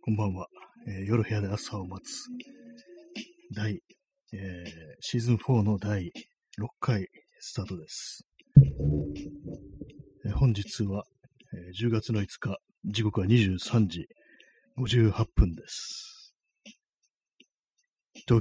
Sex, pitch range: male, 95-130 Hz